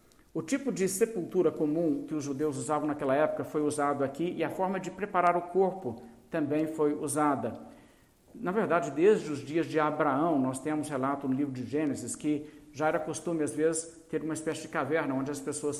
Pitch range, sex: 145-170 Hz, male